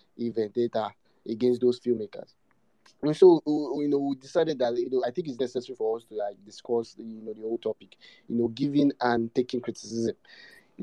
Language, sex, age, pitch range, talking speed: English, male, 20-39, 115-140 Hz, 195 wpm